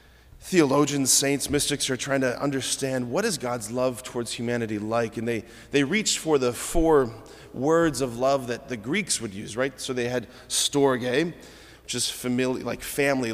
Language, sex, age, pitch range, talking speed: English, male, 30-49, 115-140 Hz, 175 wpm